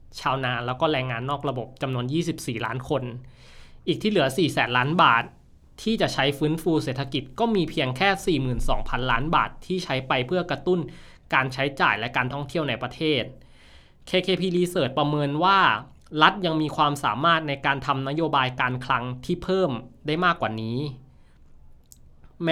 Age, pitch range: 20-39, 125-165 Hz